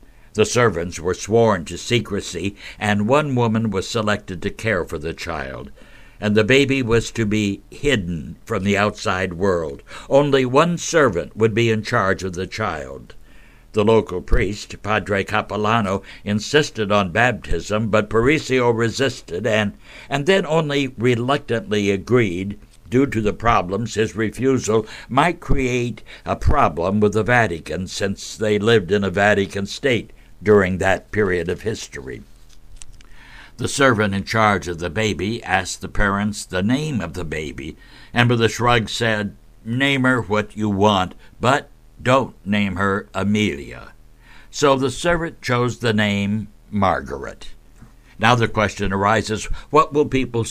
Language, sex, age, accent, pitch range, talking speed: English, male, 60-79, American, 100-120 Hz, 145 wpm